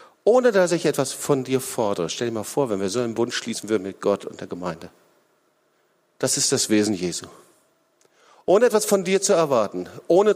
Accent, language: German, German